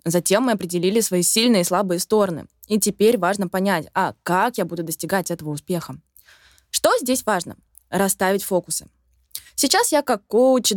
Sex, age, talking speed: female, 20-39, 155 wpm